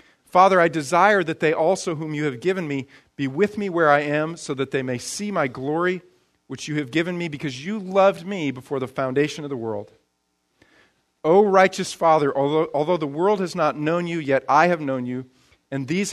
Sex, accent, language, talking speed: male, American, English, 215 wpm